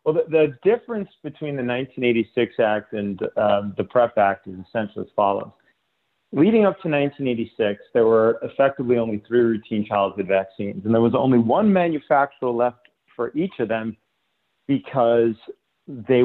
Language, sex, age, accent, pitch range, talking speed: English, male, 40-59, American, 115-140 Hz, 155 wpm